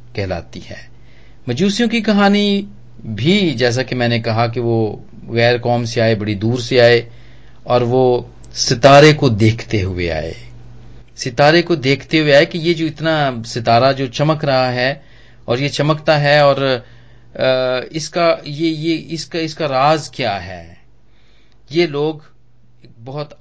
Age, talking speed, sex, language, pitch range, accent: 40-59, 145 wpm, male, Hindi, 115-145 Hz, native